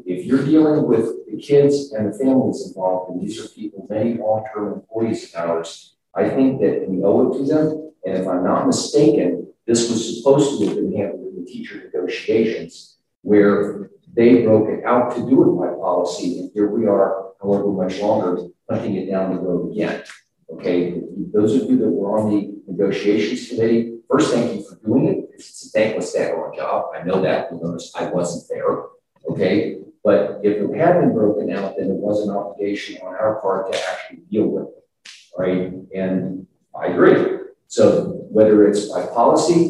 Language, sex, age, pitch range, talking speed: English, male, 40-59, 100-155 Hz, 190 wpm